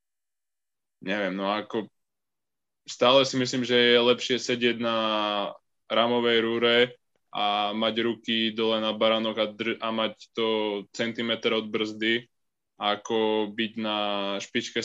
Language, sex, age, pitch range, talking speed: Slovak, male, 10-29, 110-120 Hz, 125 wpm